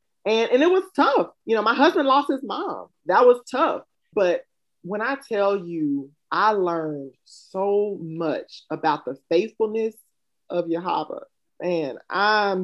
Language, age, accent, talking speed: English, 30-49, American, 145 wpm